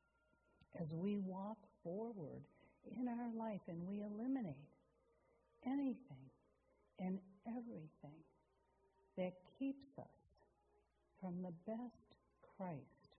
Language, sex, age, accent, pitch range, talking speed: English, female, 60-79, American, 145-195 Hz, 90 wpm